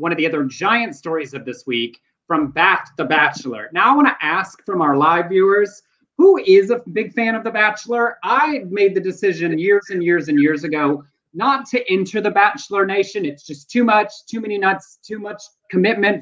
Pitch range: 145-215 Hz